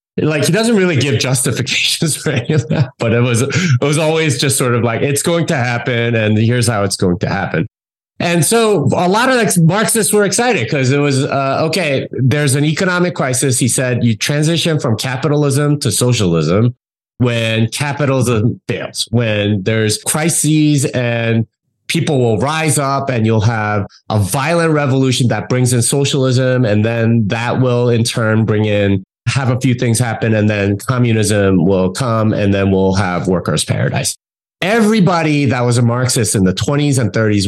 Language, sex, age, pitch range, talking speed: English, male, 30-49, 110-145 Hz, 175 wpm